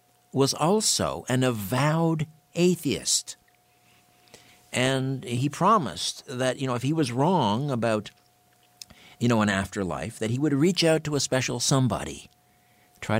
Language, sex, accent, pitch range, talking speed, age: English, male, American, 95-130 Hz, 135 wpm, 60-79